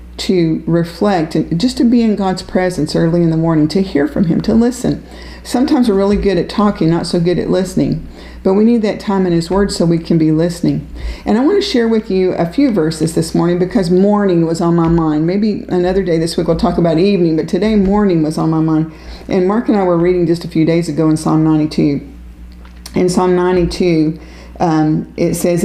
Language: English